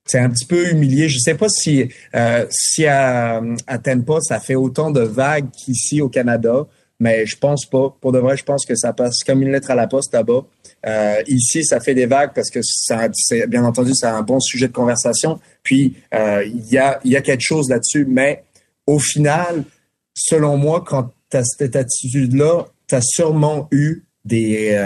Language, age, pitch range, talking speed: French, 30-49, 120-145 Hz, 205 wpm